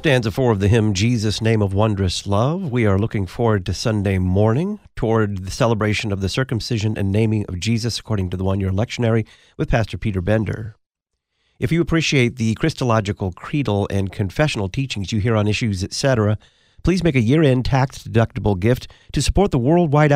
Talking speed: 180 wpm